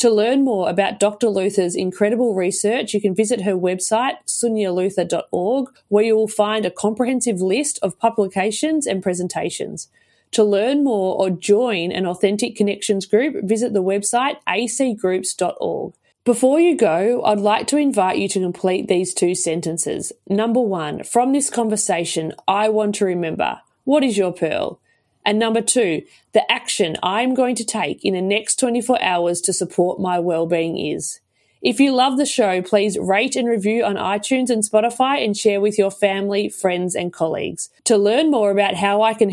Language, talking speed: English, 170 wpm